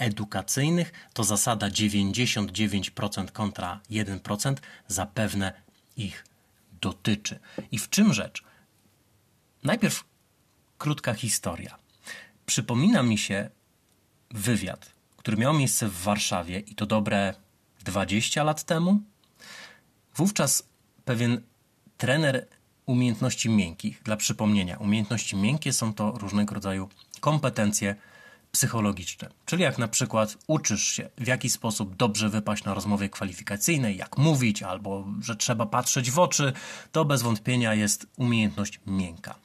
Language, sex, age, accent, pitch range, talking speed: Polish, male, 30-49, native, 100-125 Hz, 110 wpm